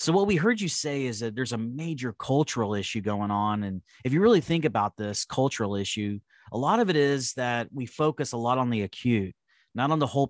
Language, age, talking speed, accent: English, 30-49, 240 wpm, American